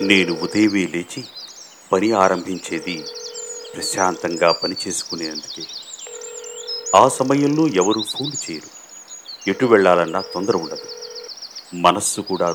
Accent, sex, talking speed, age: native, male, 85 wpm, 50-69